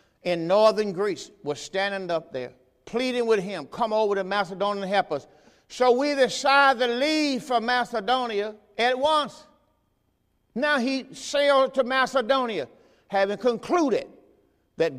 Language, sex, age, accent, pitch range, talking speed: English, male, 50-69, American, 160-255 Hz, 135 wpm